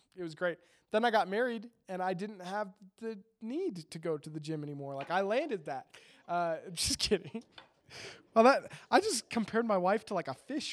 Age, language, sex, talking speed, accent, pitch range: 20-39, English, male, 205 wpm, American, 160-215 Hz